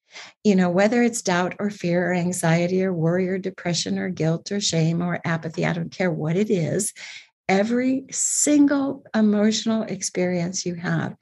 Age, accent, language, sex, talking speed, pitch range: 50-69, American, English, female, 165 wpm, 165-215 Hz